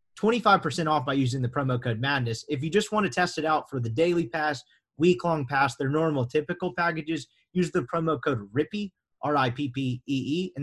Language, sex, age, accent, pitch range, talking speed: English, male, 30-49, American, 130-175 Hz, 220 wpm